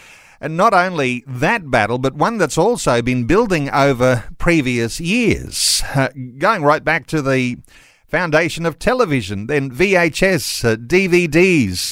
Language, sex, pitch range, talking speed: English, male, 120-165 Hz, 135 wpm